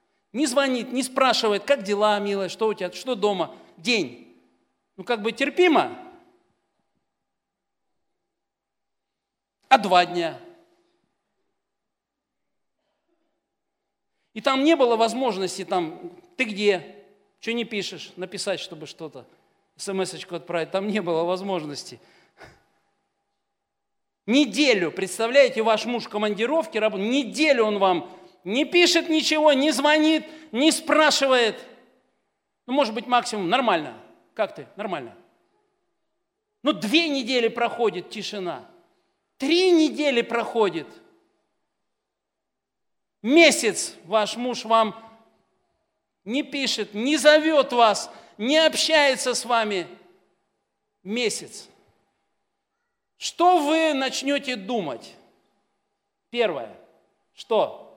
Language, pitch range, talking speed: Russian, 205-305 Hz, 95 wpm